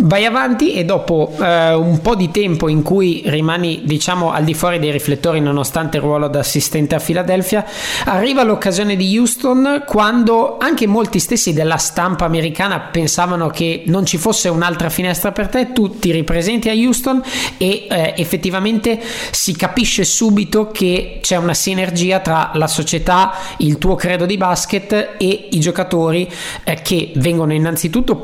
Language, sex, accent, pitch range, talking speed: Italian, male, native, 155-190 Hz, 160 wpm